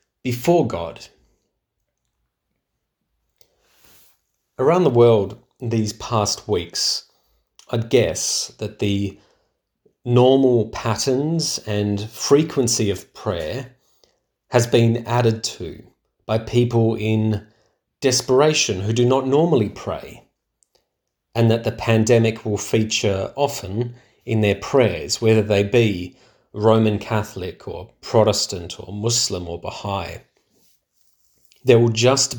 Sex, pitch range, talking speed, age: male, 105-120 Hz, 100 wpm, 30-49